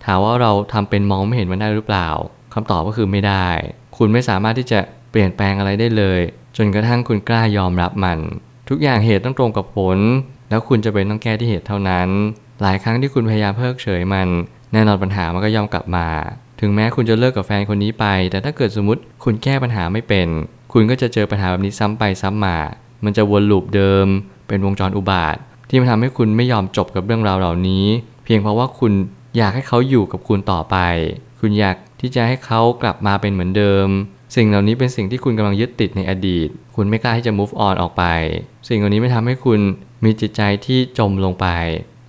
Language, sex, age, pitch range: Thai, male, 20-39, 95-115 Hz